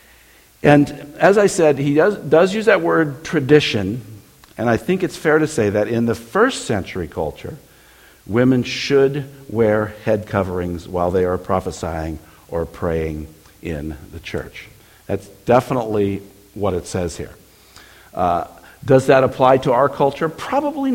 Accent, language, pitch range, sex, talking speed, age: American, English, 90-145 Hz, male, 150 wpm, 60-79